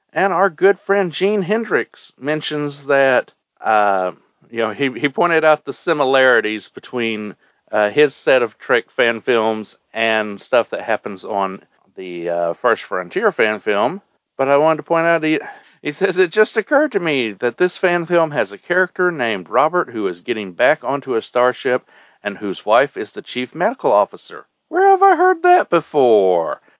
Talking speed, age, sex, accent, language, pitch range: 180 wpm, 40-59, male, American, English, 110-185 Hz